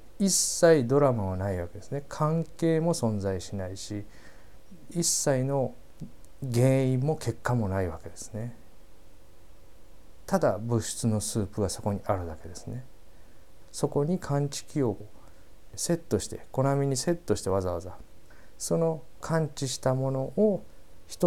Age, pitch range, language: 50-69, 90-130 Hz, Japanese